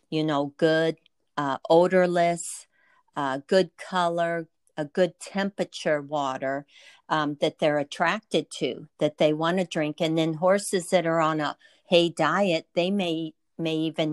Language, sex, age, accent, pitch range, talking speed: English, female, 50-69, American, 155-185 Hz, 150 wpm